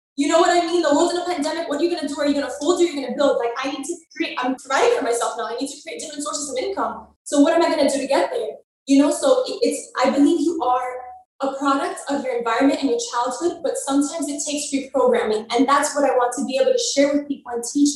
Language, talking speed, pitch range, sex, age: English, 295 wpm, 260-330 Hz, female, 20-39